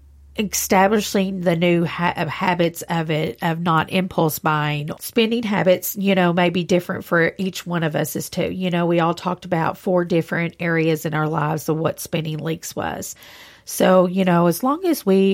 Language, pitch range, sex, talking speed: English, 165-195 Hz, female, 190 wpm